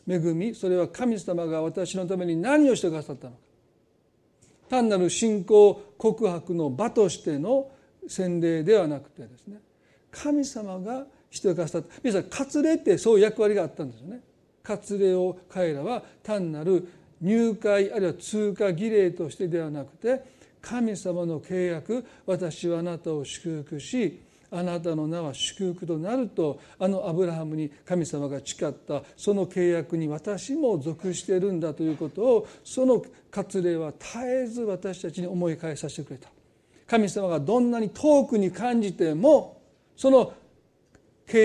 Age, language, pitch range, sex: 40-59, Japanese, 165-220 Hz, male